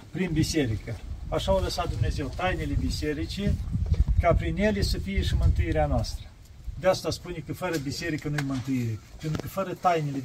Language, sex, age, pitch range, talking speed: Romanian, male, 40-59, 130-190 Hz, 170 wpm